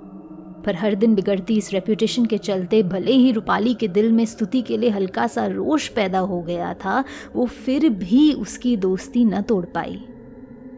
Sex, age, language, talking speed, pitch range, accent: female, 20-39, Hindi, 180 wpm, 195-245 Hz, native